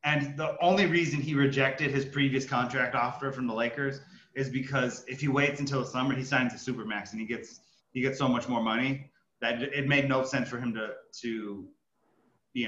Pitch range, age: 120-145 Hz, 30-49